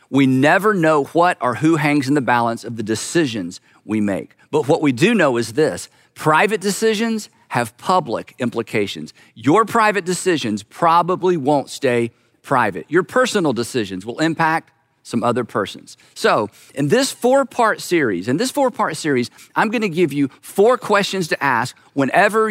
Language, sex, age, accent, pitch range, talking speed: English, male, 50-69, American, 135-195 Hz, 160 wpm